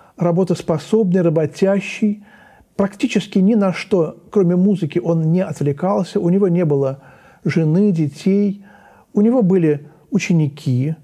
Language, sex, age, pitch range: Russian, male, 40-59, 145-195 Hz